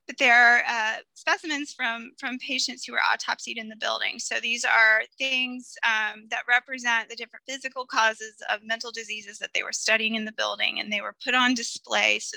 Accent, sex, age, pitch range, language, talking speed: American, female, 20-39, 225-270 Hz, English, 195 wpm